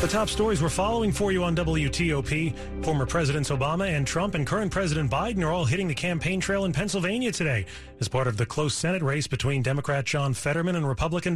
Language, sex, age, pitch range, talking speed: English, male, 30-49, 130-170 Hz, 210 wpm